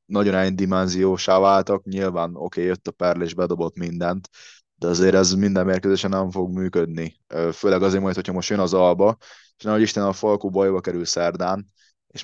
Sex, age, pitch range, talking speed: male, 20-39, 85-95 Hz, 175 wpm